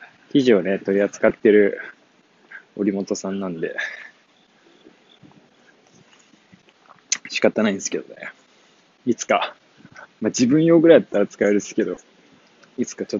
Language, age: Japanese, 20-39